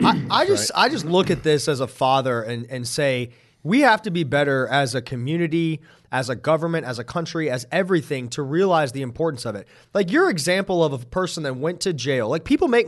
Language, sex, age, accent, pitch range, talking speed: English, male, 30-49, American, 145-200 Hz, 230 wpm